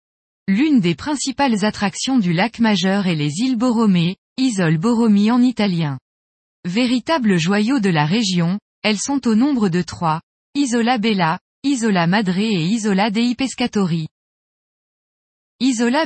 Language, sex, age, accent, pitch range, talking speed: French, female, 20-39, French, 180-245 Hz, 130 wpm